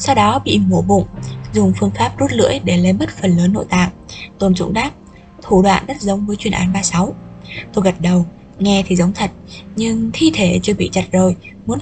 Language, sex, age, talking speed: Vietnamese, female, 20-39, 220 wpm